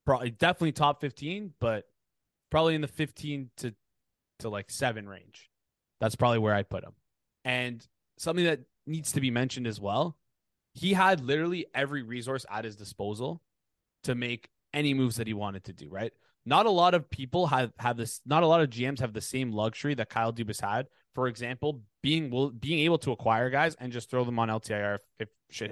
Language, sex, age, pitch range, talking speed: English, male, 20-39, 115-150 Hz, 200 wpm